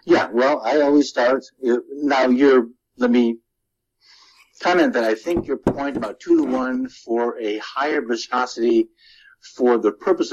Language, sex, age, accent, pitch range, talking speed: English, male, 60-79, American, 105-125 Hz, 150 wpm